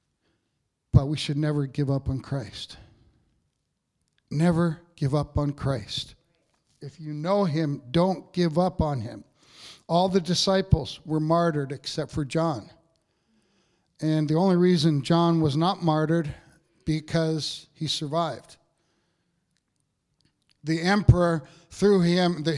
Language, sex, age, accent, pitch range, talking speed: English, male, 60-79, American, 145-170 Hz, 120 wpm